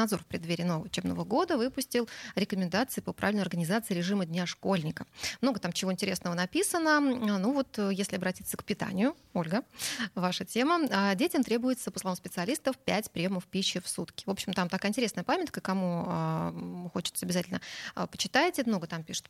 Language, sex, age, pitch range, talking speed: Russian, female, 20-39, 180-230 Hz, 160 wpm